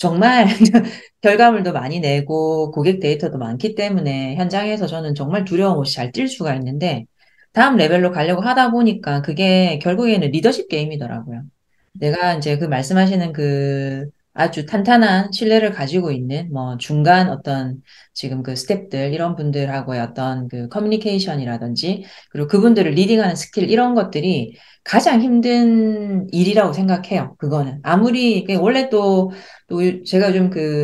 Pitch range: 150-225 Hz